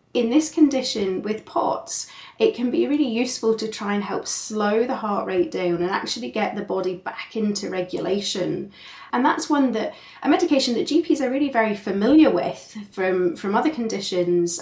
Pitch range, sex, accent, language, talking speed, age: 195-250 Hz, female, British, English, 180 wpm, 30-49